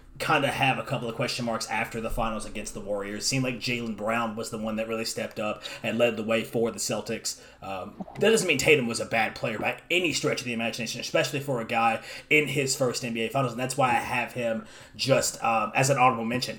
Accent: American